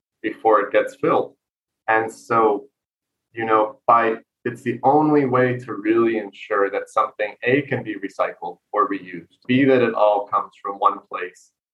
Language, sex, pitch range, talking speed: English, male, 100-125 Hz, 165 wpm